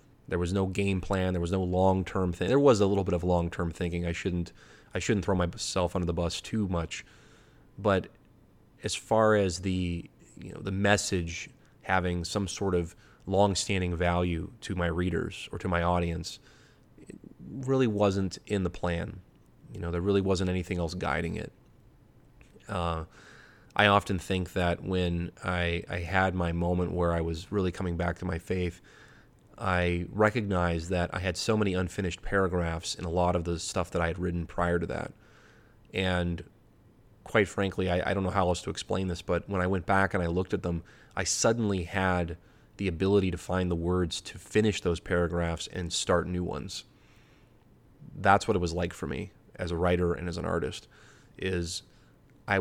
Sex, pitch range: male, 85-100 Hz